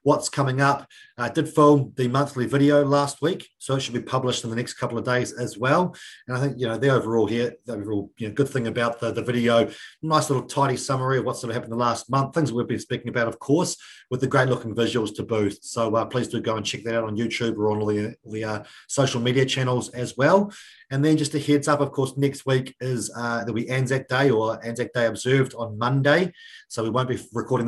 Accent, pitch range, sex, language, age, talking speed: Australian, 115-135 Hz, male, English, 30-49, 260 wpm